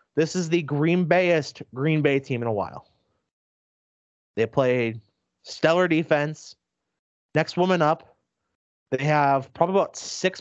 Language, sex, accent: English, male, American